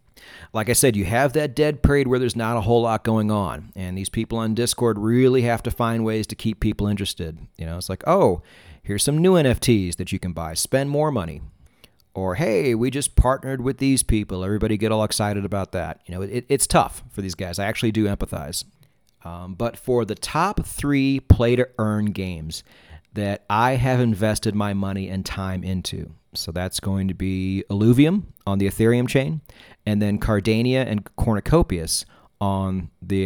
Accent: American